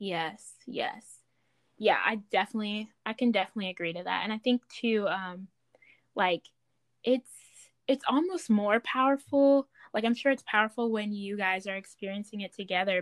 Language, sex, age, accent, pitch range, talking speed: English, female, 10-29, American, 195-225 Hz, 155 wpm